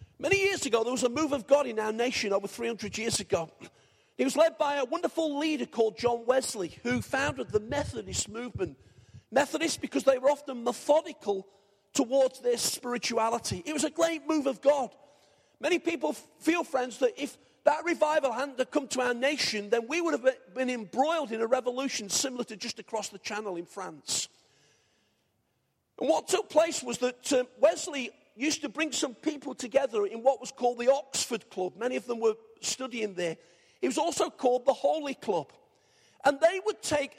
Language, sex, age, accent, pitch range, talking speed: English, male, 40-59, British, 230-295 Hz, 185 wpm